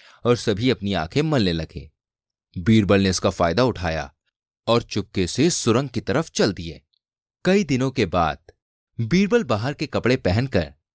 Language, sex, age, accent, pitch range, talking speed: Hindi, male, 30-49, native, 95-140 Hz, 155 wpm